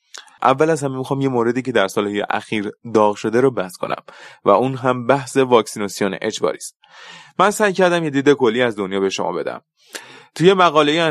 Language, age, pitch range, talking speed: Persian, 20-39, 110-145 Hz, 185 wpm